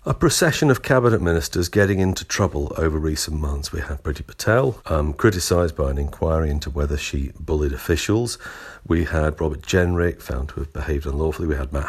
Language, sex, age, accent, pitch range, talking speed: English, male, 50-69, British, 75-100 Hz, 185 wpm